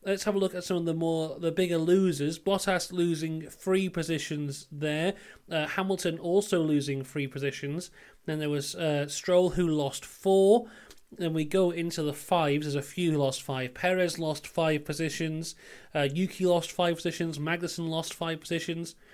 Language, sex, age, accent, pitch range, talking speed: English, male, 30-49, British, 155-200 Hz, 175 wpm